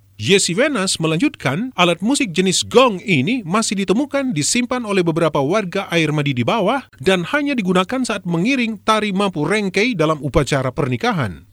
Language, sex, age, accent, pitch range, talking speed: Indonesian, male, 40-59, native, 155-235 Hz, 150 wpm